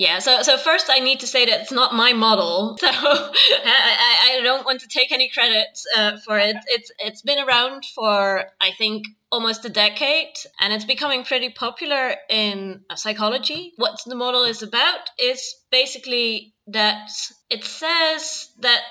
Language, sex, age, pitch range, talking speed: English, female, 20-39, 210-270 Hz, 170 wpm